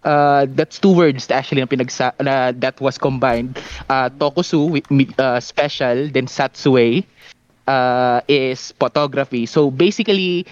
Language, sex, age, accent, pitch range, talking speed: Filipino, male, 20-39, native, 125-145 Hz, 120 wpm